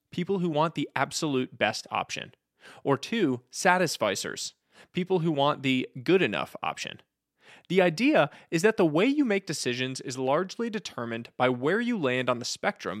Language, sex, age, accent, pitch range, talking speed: English, male, 20-39, American, 130-195 Hz, 165 wpm